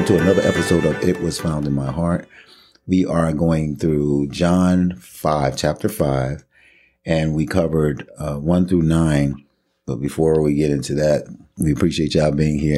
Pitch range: 70-80 Hz